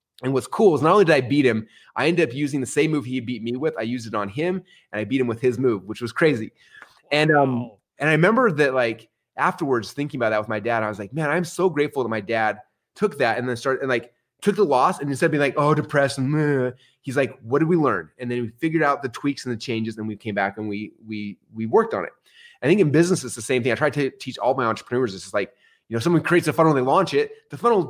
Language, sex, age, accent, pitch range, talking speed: English, male, 20-39, American, 125-175 Hz, 290 wpm